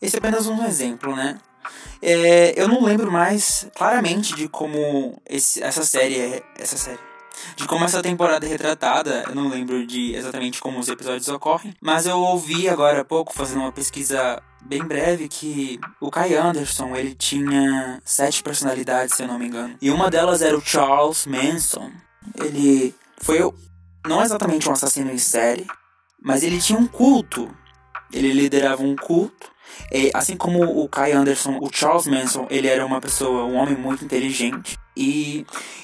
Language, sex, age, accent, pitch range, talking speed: Portuguese, male, 20-39, Brazilian, 130-170 Hz, 165 wpm